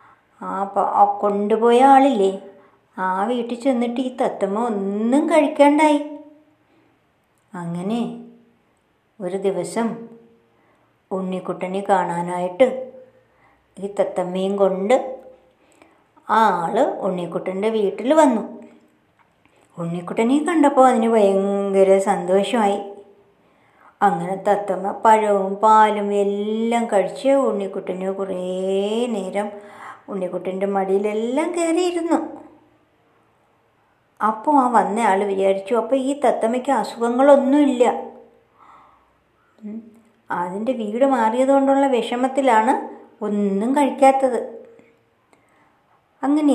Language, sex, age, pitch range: Malayalam, male, 50-69, 195-260 Hz